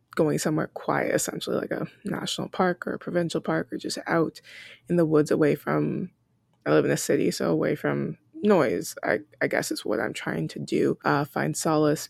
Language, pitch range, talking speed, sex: English, 150-190 Hz, 205 wpm, female